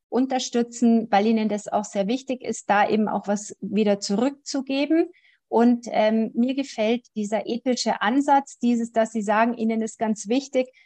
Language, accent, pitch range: German, German, 215-255 Hz